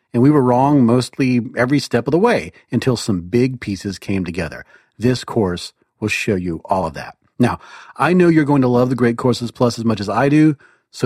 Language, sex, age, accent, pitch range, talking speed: English, male, 40-59, American, 110-150 Hz, 220 wpm